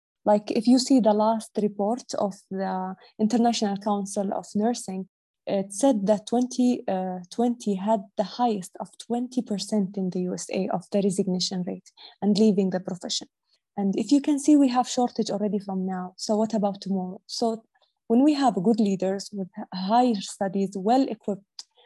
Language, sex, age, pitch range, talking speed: Arabic, female, 20-39, 195-240 Hz, 160 wpm